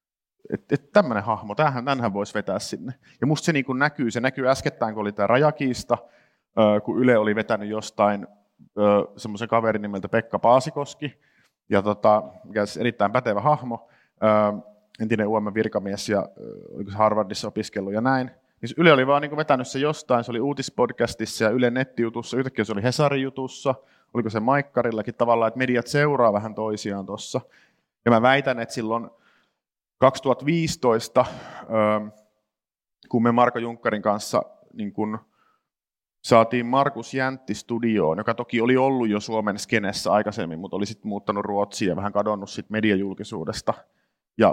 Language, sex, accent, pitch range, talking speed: Finnish, male, native, 105-125 Hz, 150 wpm